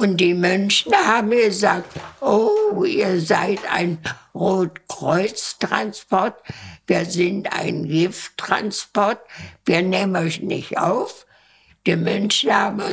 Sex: female